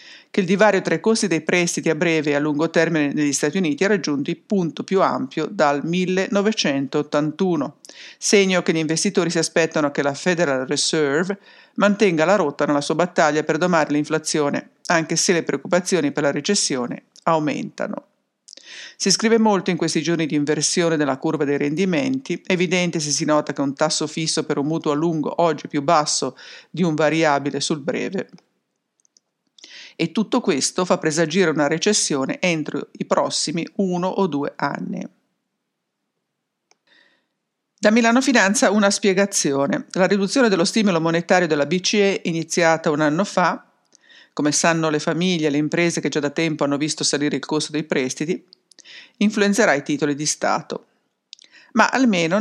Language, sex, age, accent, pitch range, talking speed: English, female, 50-69, Italian, 150-195 Hz, 160 wpm